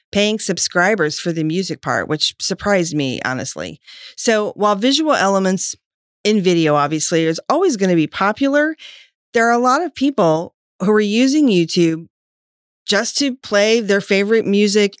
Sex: female